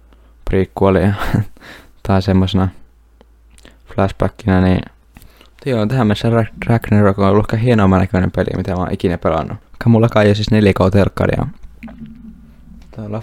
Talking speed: 120 wpm